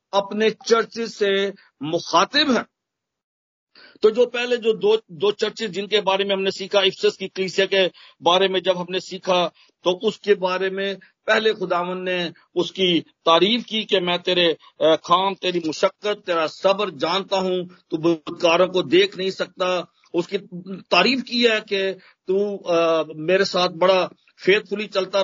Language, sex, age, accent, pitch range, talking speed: Hindi, male, 50-69, native, 170-200 Hz, 130 wpm